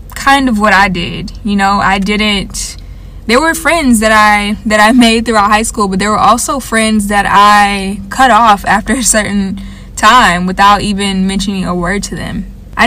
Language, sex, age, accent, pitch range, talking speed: English, female, 20-39, American, 190-220 Hz, 190 wpm